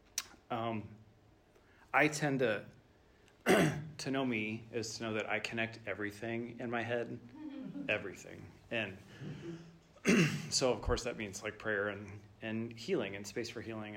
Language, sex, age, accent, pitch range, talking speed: English, male, 30-49, American, 105-125 Hz, 140 wpm